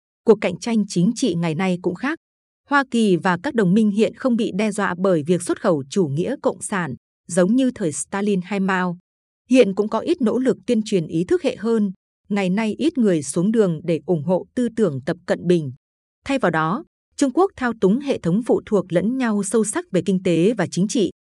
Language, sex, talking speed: Vietnamese, female, 230 wpm